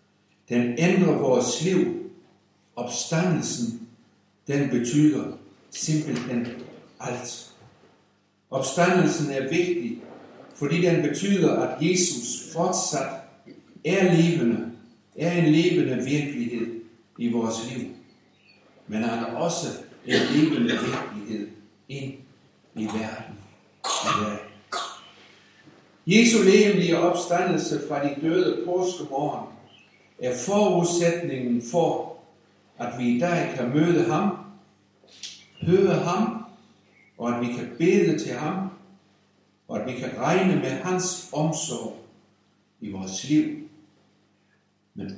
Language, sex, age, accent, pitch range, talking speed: Danish, male, 60-79, German, 120-180 Hz, 105 wpm